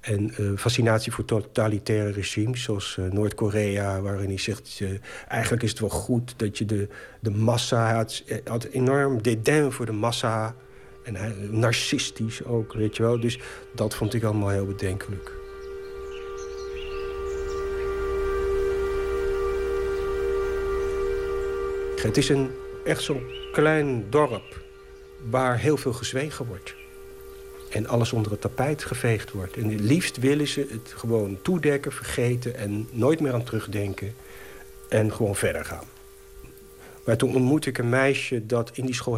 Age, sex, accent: 50-69, male, Dutch